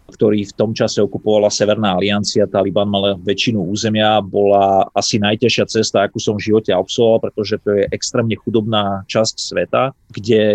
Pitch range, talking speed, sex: 100-110 Hz, 165 wpm, male